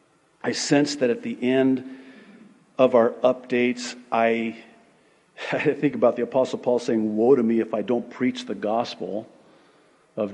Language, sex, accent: English, male, American